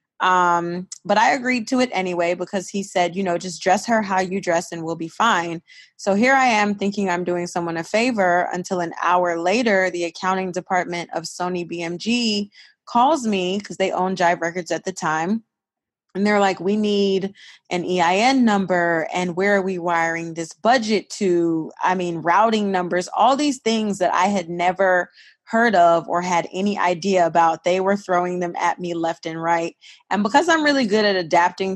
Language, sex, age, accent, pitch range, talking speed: English, female, 20-39, American, 170-200 Hz, 195 wpm